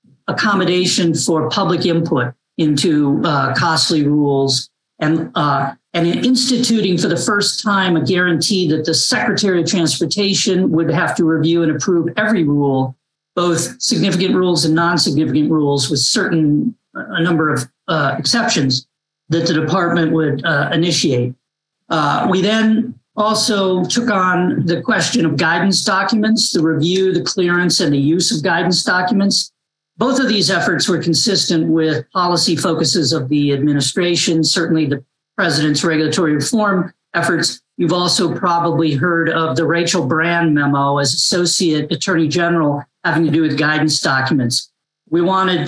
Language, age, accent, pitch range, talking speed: English, 50-69, American, 155-185 Hz, 145 wpm